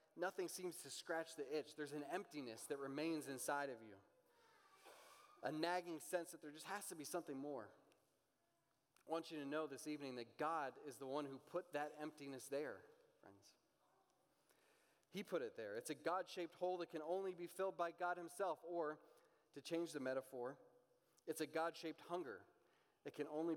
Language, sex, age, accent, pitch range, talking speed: English, male, 30-49, American, 135-170 Hz, 180 wpm